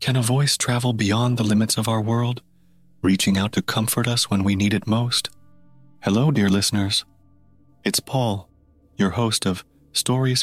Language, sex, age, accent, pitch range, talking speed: English, male, 30-49, American, 95-115 Hz, 165 wpm